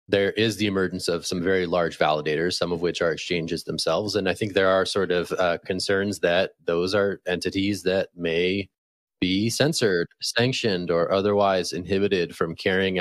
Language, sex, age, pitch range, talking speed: English, male, 20-39, 90-105 Hz, 175 wpm